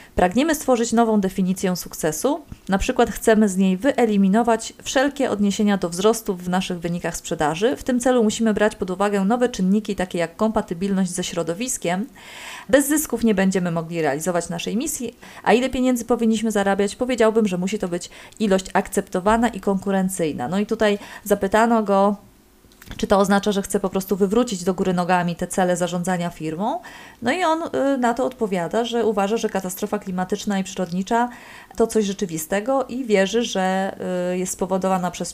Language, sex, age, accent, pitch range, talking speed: Polish, female, 30-49, native, 185-230 Hz, 165 wpm